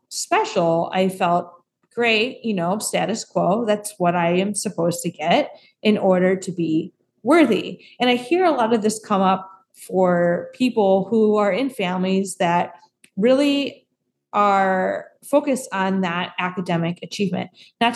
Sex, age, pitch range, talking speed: female, 20-39, 180-230 Hz, 145 wpm